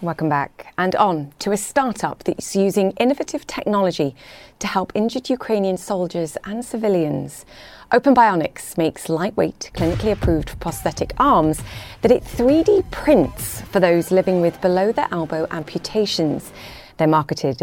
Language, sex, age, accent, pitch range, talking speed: English, female, 30-49, British, 155-215 Hz, 135 wpm